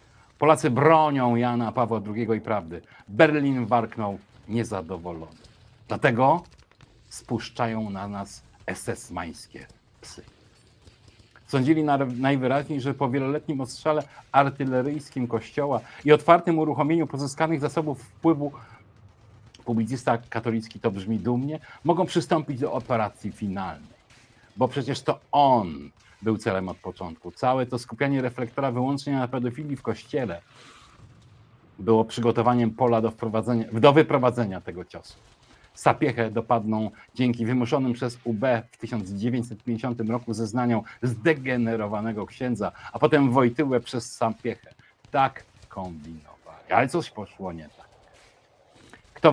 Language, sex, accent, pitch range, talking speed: Polish, male, native, 110-135 Hz, 110 wpm